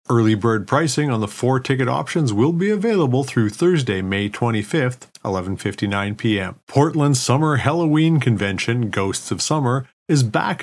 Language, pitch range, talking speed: English, 105-145 Hz, 135 wpm